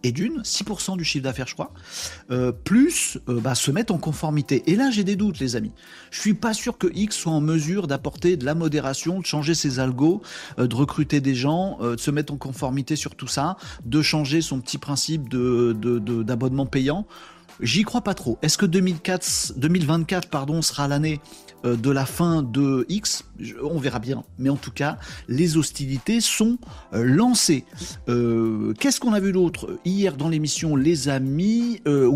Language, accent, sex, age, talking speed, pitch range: French, French, male, 40-59, 195 wpm, 130-175 Hz